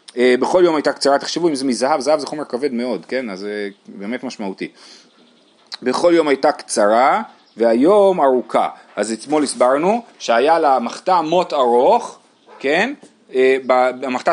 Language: Hebrew